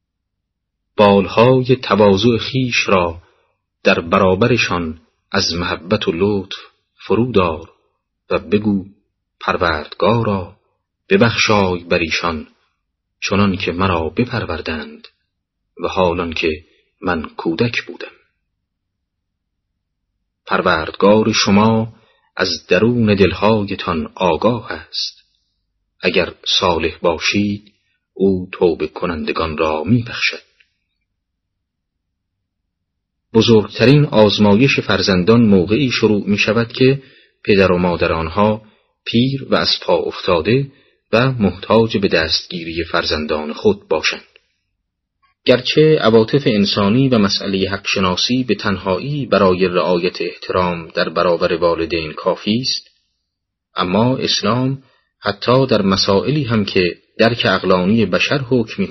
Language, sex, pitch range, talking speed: Persian, male, 90-115 Hz, 95 wpm